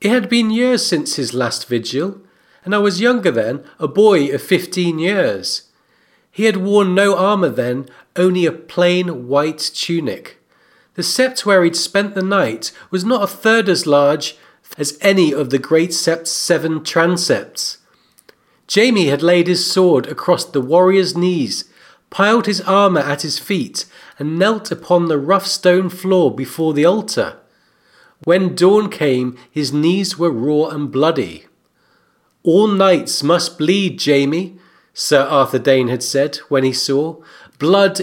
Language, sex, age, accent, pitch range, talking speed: English, male, 40-59, British, 150-195 Hz, 155 wpm